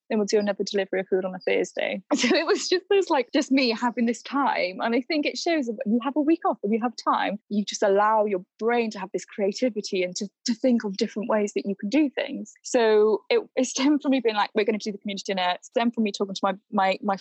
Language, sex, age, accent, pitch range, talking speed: English, female, 20-39, British, 195-250 Hz, 285 wpm